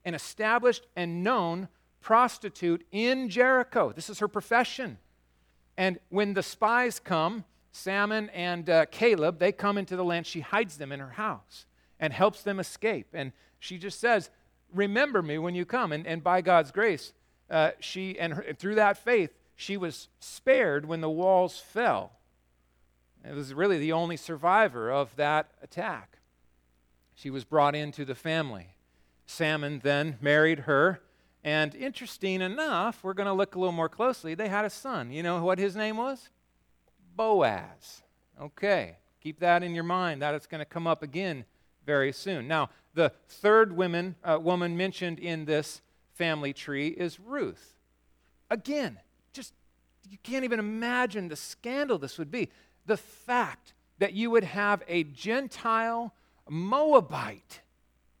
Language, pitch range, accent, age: English, 150-210 Hz, American, 40-59